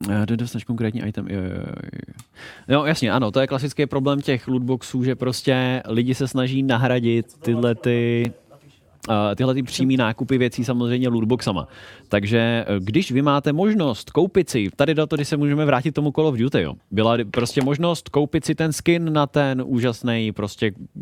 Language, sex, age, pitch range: Czech, male, 20-39, 110-145 Hz